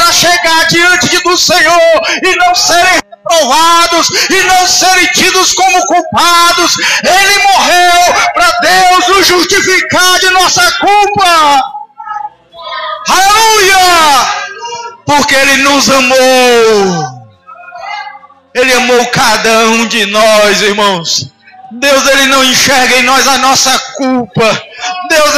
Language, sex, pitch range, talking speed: Portuguese, male, 255-355 Hz, 105 wpm